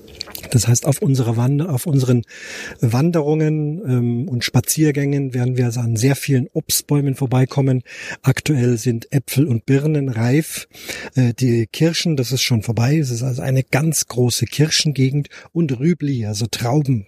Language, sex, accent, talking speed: German, male, German, 150 wpm